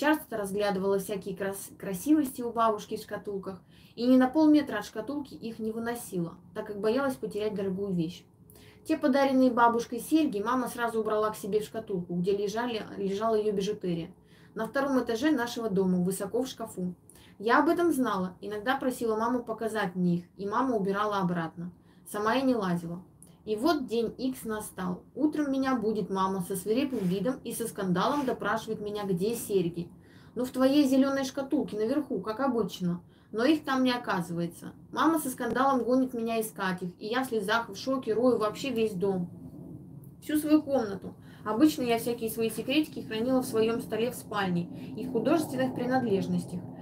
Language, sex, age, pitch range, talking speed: Russian, female, 20-39, 195-255 Hz, 170 wpm